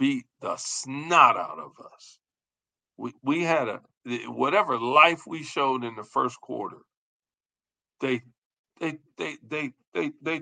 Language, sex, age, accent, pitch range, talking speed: English, male, 50-69, American, 125-205 Hz, 145 wpm